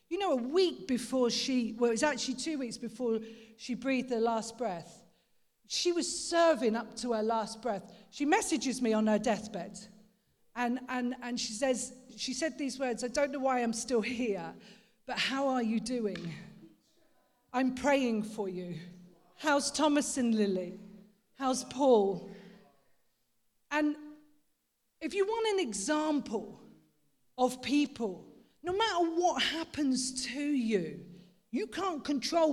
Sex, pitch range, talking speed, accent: female, 210-265 Hz, 150 wpm, British